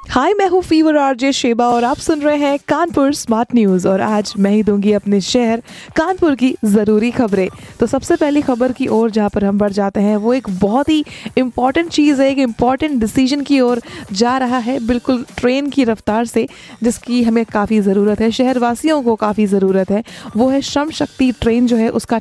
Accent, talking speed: native, 160 wpm